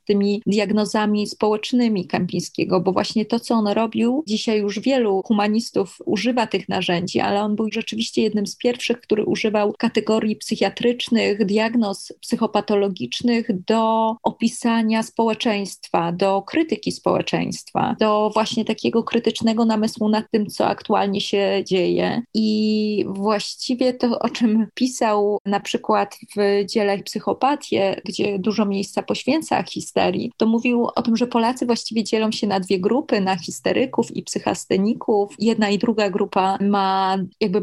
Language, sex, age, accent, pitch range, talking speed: Polish, female, 20-39, native, 195-225 Hz, 135 wpm